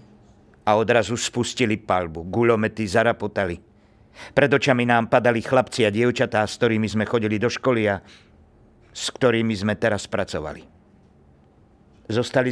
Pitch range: 105-130 Hz